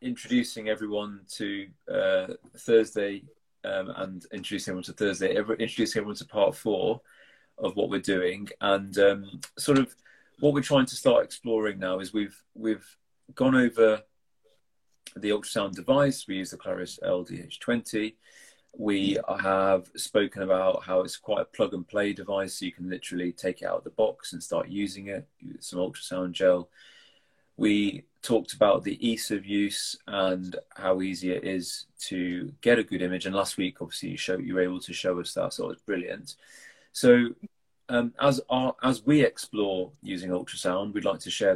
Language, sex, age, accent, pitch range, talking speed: English, male, 30-49, British, 95-120 Hz, 180 wpm